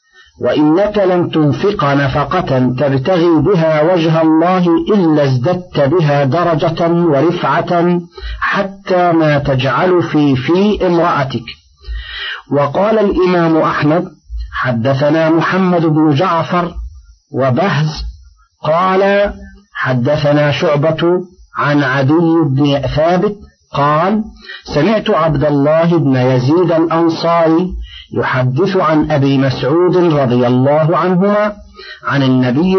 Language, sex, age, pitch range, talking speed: Arabic, male, 50-69, 140-180 Hz, 90 wpm